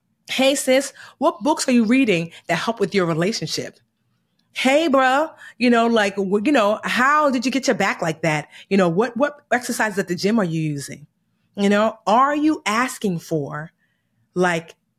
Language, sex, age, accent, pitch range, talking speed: English, female, 30-49, American, 160-210 Hz, 180 wpm